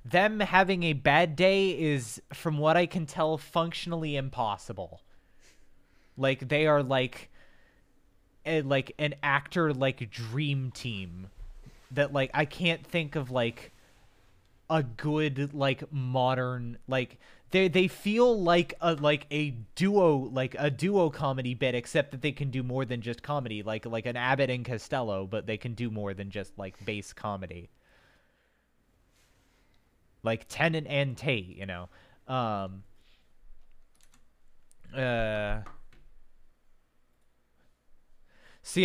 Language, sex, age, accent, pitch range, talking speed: English, male, 20-39, American, 110-150 Hz, 130 wpm